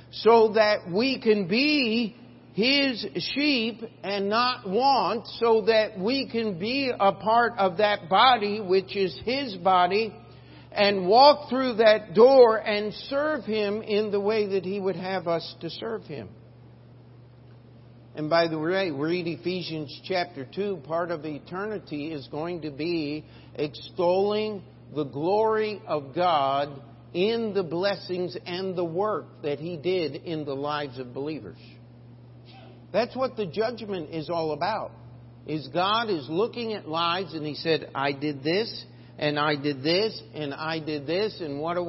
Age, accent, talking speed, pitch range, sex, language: 50-69, American, 155 wpm, 150-215 Hz, male, English